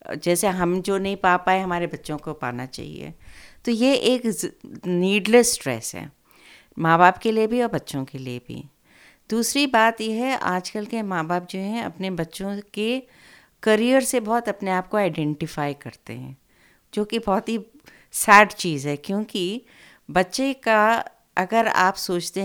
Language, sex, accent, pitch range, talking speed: Hindi, female, native, 160-225 Hz, 165 wpm